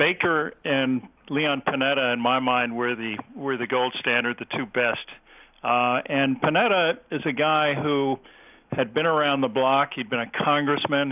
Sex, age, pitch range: male, 50-69, 125-140 Hz